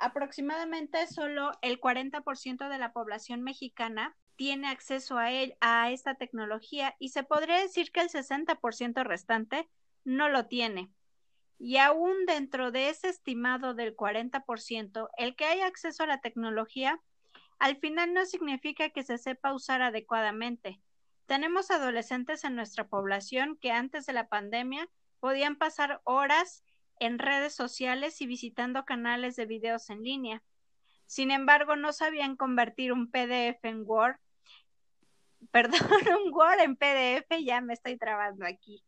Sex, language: female, Spanish